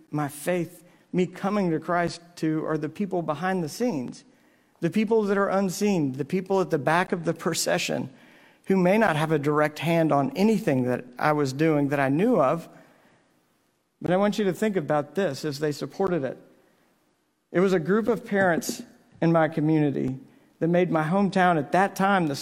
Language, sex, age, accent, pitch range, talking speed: English, male, 50-69, American, 155-190 Hz, 195 wpm